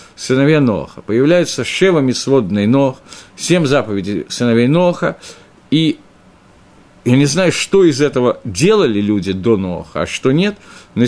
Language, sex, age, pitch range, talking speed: Russian, male, 50-69, 120-170 Hz, 135 wpm